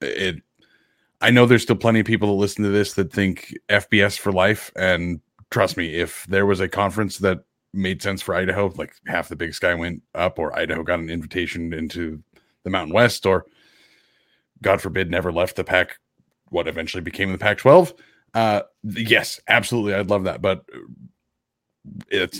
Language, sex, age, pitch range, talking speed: English, male, 30-49, 95-110 Hz, 175 wpm